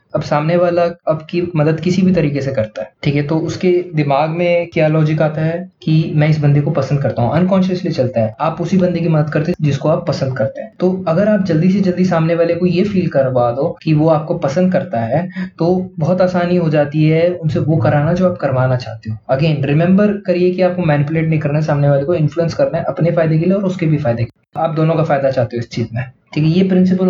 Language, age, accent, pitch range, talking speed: Hindi, 20-39, native, 145-175 Hz, 245 wpm